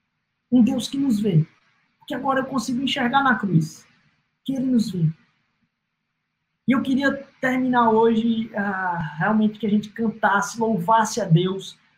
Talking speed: 150 wpm